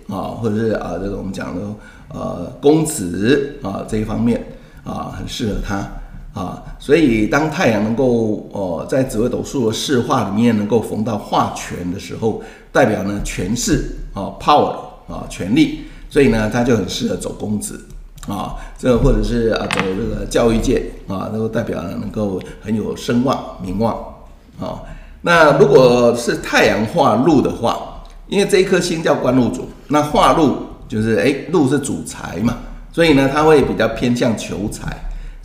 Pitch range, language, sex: 105-140 Hz, Chinese, male